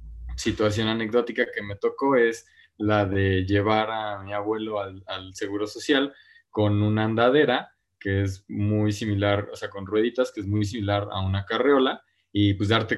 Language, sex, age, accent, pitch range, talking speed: Spanish, male, 20-39, Mexican, 95-115 Hz, 170 wpm